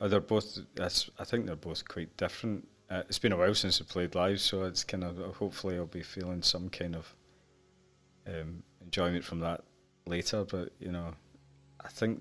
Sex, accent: male, British